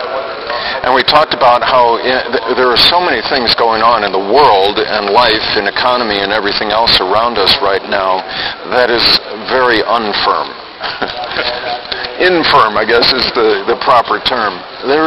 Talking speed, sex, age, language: 155 wpm, male, 50-69, English